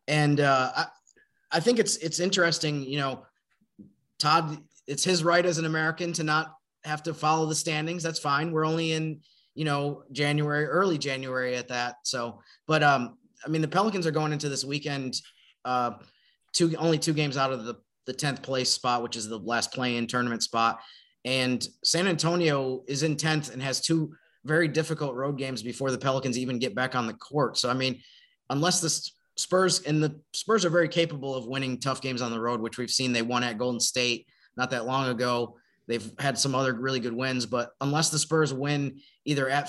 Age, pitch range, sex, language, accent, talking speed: 30-49, 125-155 Hz, male, English, American, 205 wpm